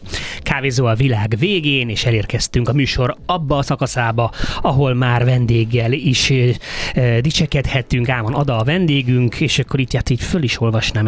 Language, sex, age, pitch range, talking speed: Hungarian, male, 30-49, 110-140 Hz, 160 wpm